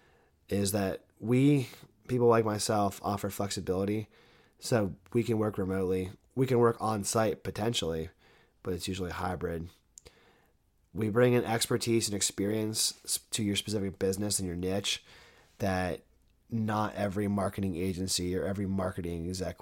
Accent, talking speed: American, 135 wpm